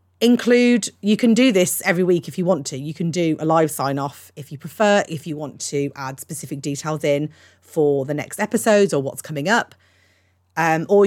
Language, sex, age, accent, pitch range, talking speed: English, female, 30-49, British, 140-195 Hz, 210 wpm